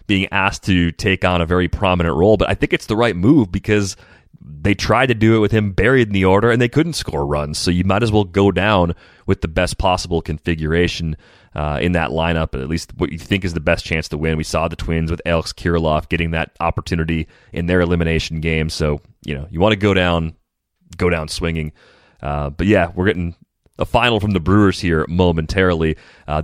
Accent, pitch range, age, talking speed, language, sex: American, 80-95 Hz, 30-49, 220 wpm, English, male